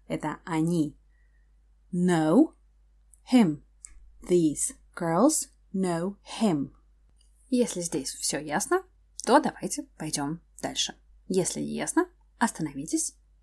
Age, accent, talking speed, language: 20-39, native, 90 wpm, Russian